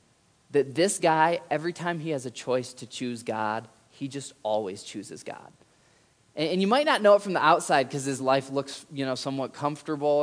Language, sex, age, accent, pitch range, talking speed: English, male, 20-39, American, 130-175 Hz, 205 wpm